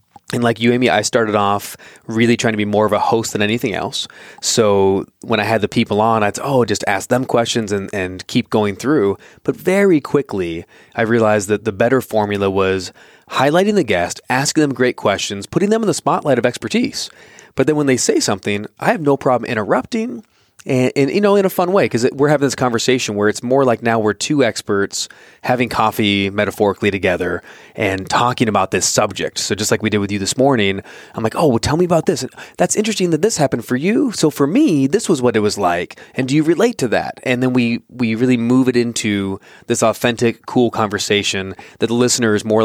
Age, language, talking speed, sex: 20-39, English, 220 wpm, male